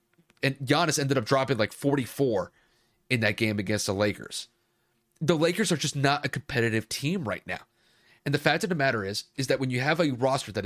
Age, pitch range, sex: 30-49, 115-150 Hz, male